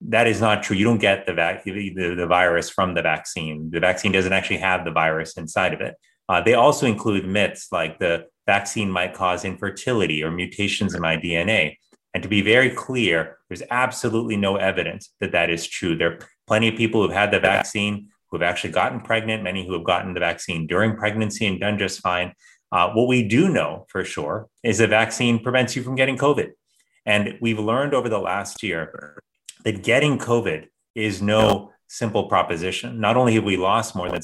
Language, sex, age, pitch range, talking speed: English, male, 30-49, 90-110 Hz, 200 wpm